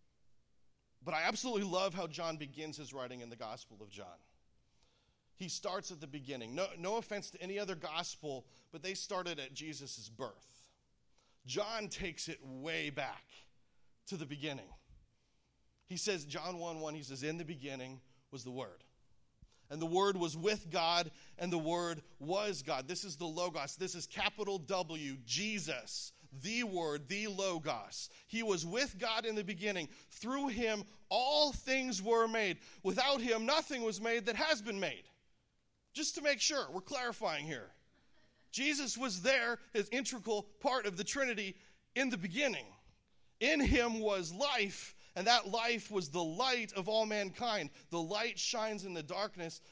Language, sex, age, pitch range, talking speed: English, male, 40-59, 150-220 Hz, 165 wpm